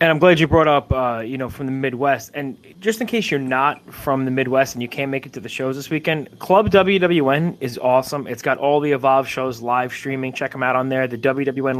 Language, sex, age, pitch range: English, male, 20-39, 130-165 Hz